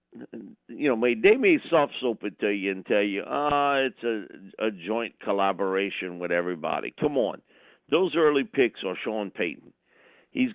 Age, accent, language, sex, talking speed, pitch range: 50-69, American, English, male, 165 wpm, 100-145 Hz